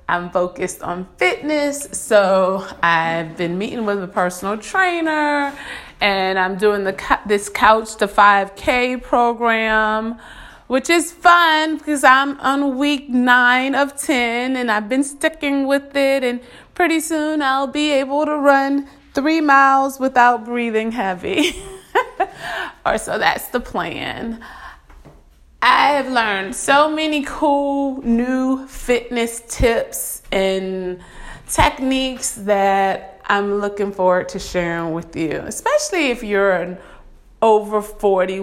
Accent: American